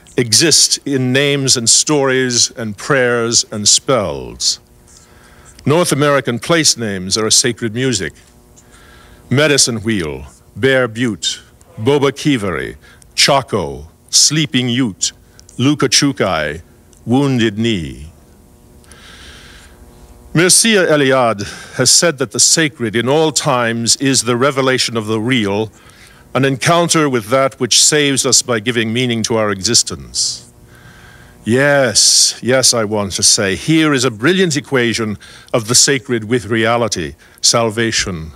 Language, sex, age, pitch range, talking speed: English, male, 50-69, 110-135 Hz, 120 wpm